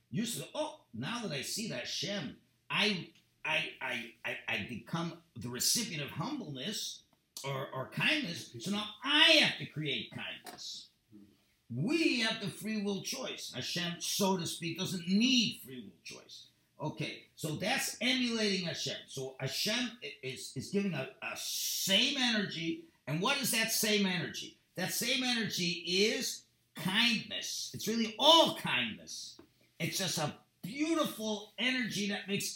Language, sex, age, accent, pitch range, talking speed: English, male, 50-69, American, 165-225 Hz, 145 wpm